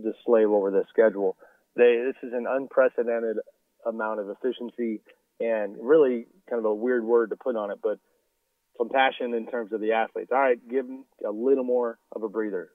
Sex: male